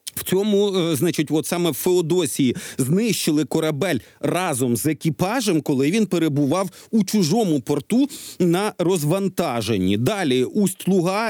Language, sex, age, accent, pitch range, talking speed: Ukrainian, male, 40-59, native, 150-190 Hz, 115 wpm